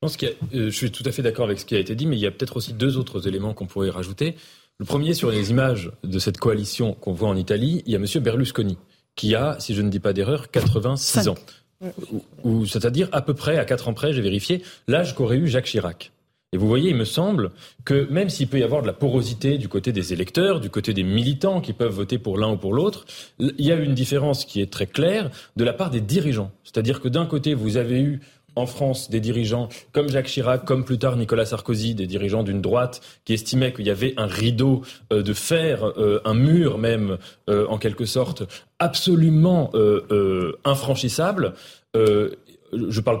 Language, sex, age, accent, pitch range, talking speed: French, male, 30-49, French, 110-150 Hz, 215 wpm